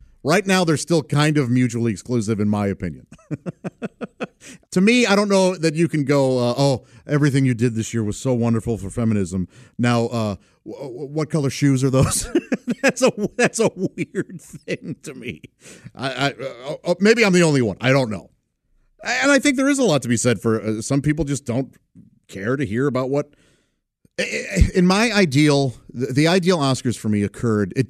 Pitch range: 110-155 Hz